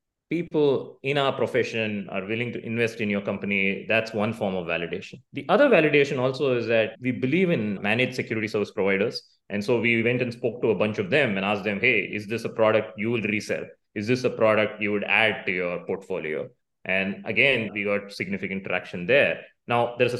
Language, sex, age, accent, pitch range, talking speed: English, male, 20-39, Indian, 105-130 Hz, 210 wpm